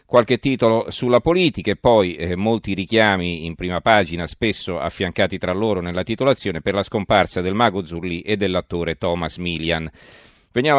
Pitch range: 90-110 Hz